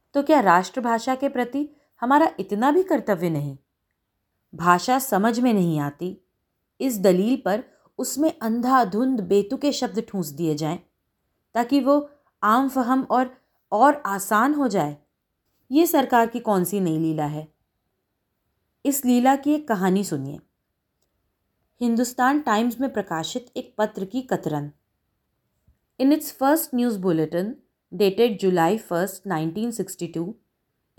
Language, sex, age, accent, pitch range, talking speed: Hindi, female, 30-49, native, 170-250 Hz, 125 wpm